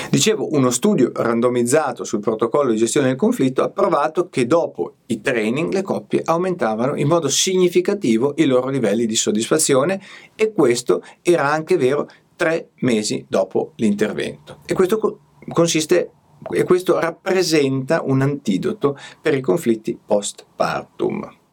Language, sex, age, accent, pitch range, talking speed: Italian, male, 50-69, native, 120-185 Hz, 135 wpm